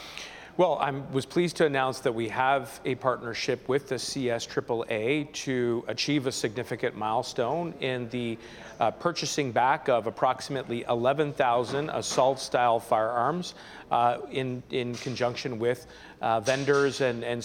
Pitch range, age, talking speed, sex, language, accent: 120-140 Hz, 40-59, 130 wpm, male, English, American